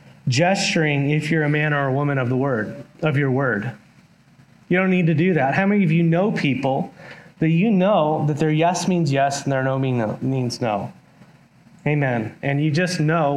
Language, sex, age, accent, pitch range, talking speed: English, male, 30-49, American, 140-170 Hz, 200 wpm